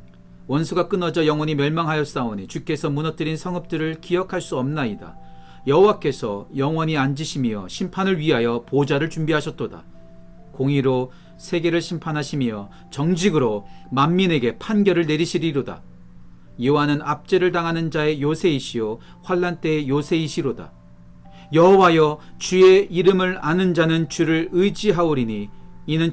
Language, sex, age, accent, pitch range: Korean, male, 40-59, native, 120-170 Hz